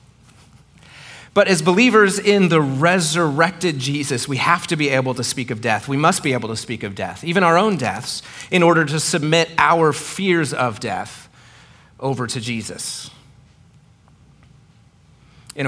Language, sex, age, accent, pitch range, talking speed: English, male, 30-49, American, 115-145 Hz, 155 wpm